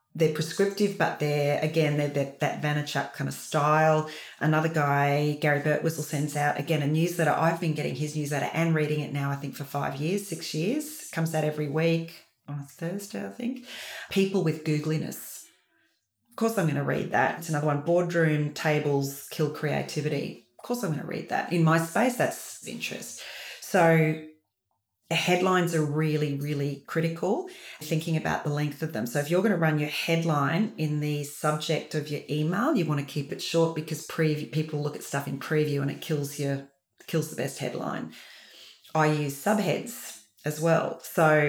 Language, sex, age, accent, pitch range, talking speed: English, female, 30-49, Australian, 145-165 Hz, 185 wpm